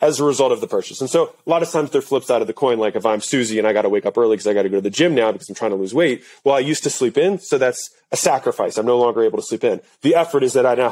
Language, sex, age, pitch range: English, male, 30-49, 125-165 Hz